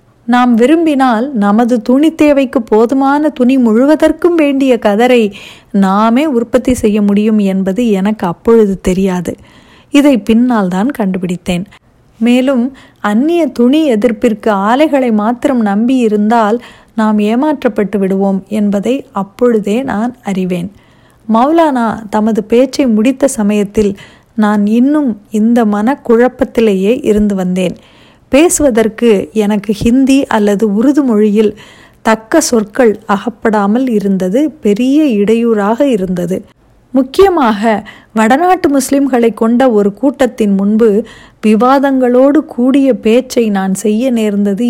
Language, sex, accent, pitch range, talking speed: Tamil, female, native, 210-260 Hz, 95 wpm